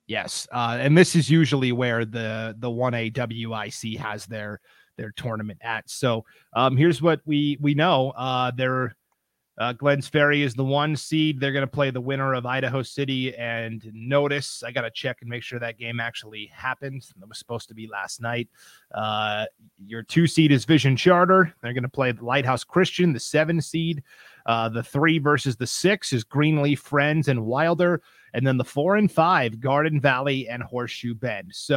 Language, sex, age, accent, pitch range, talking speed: English, male, 30-49, American, 115-145 Hz, 185 wpm